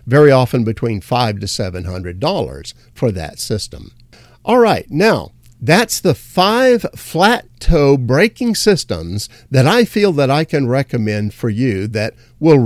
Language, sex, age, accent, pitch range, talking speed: English, male, 50-69, American, 115-165 Hz, 140 wpm